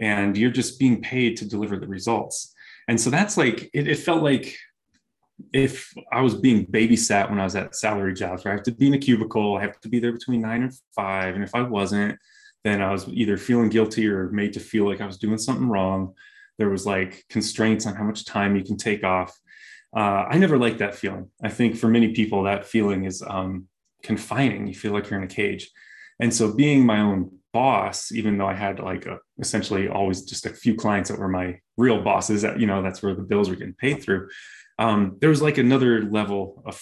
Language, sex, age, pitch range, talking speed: English, male, 20-39, 100-115 Hz, 230 wpm